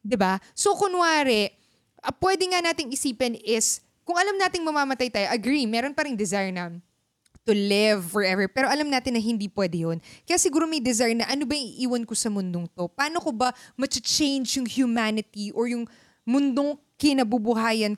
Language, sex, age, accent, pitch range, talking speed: Filipino, female, 20-39, native, 205-275 Hz, 175 wpm